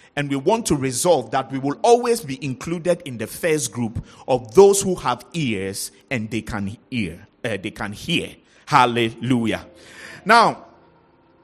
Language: English